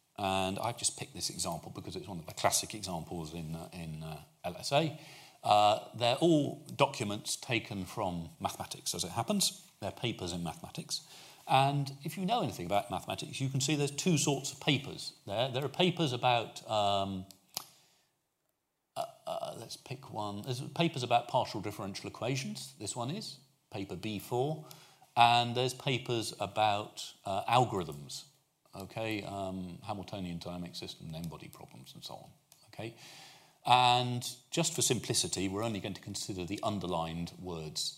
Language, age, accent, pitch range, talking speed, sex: English, 40-59, British, 90-130 Hz, 155 wpm, male